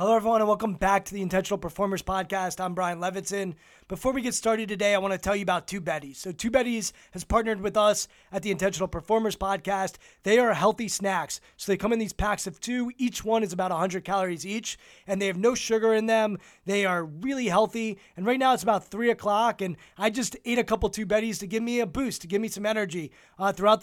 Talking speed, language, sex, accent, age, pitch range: 240 wpm, English, male, American, 20-39, 190-225 Hz